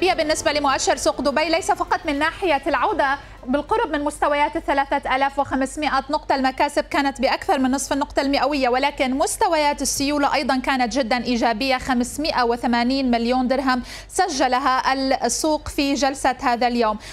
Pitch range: 250-305 Hz